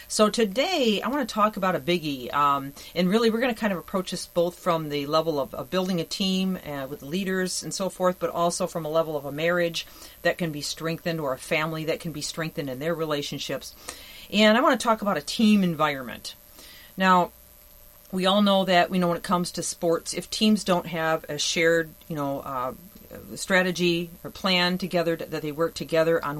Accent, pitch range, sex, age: American, 165-195 Hz, female, 40-59